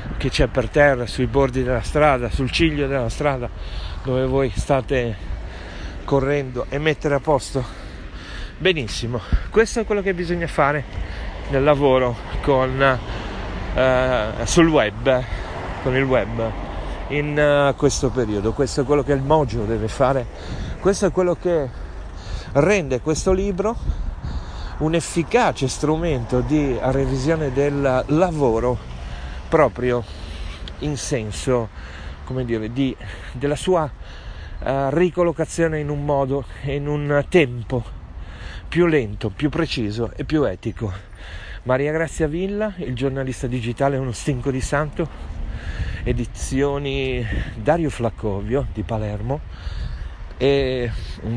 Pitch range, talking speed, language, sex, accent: 105-145 Hz, 115 wpm, Italian, male, native